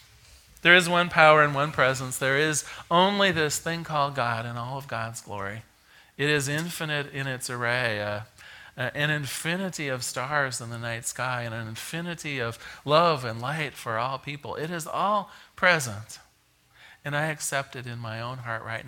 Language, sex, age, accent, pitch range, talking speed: English, male, 40-59, American, 120-165 Hz, 185 wpm